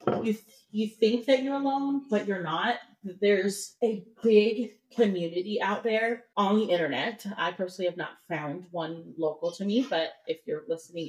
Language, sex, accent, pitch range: English, female, American, 170-240 Hz